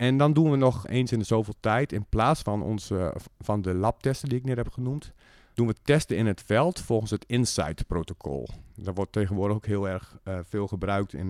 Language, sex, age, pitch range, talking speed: Dutch, male, 50-69, 100-125 Hz, 225 wpm